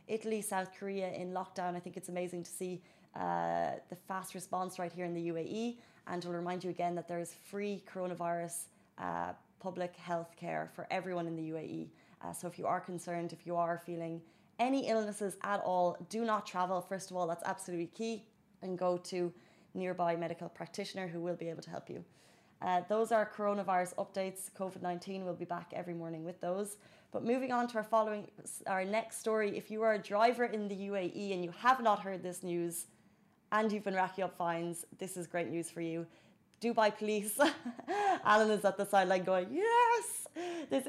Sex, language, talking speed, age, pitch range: female, Arabic, 195 wpm, 20-39, 175-210 Hz